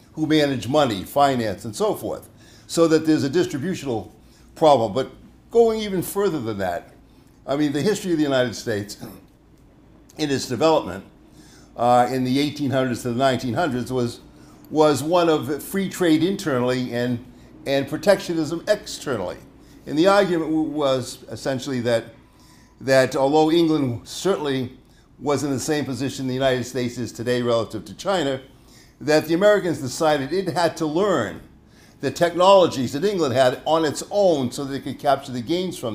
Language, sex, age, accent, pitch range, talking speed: English, male, 60-79, American, 125-160 Hz, 160 wpm